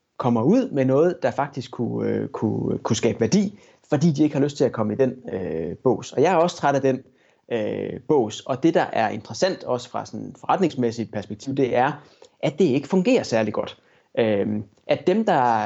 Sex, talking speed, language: male, 210 wpm, Danish